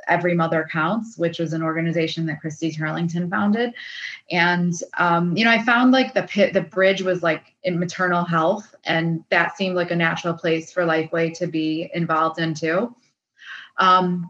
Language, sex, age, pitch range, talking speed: English, female, 20-39, 160-180 Hz, 175 wpm